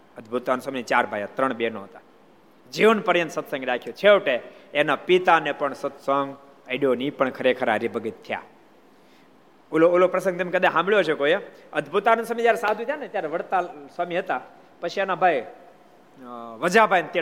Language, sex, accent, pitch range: Gujarati, male, native, 135-175 Hz